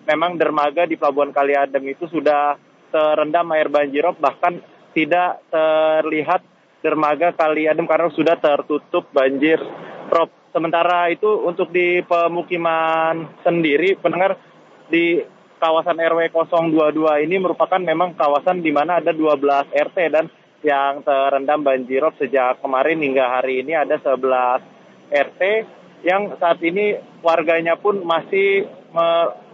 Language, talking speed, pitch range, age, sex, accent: Indonesian, 120 wpm, 150-175 Hz, 30-49, male, native